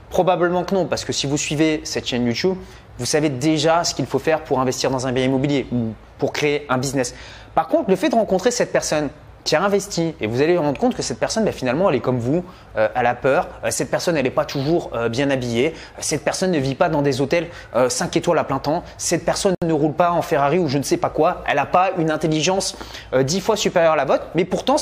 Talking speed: 265 wpm